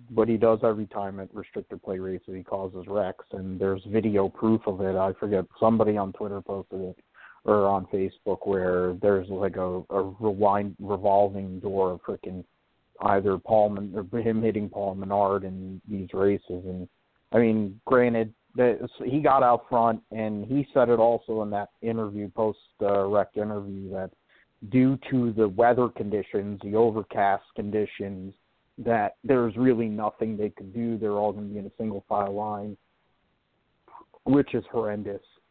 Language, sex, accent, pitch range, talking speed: English, male, American, 100-110 Hz, 170 wpm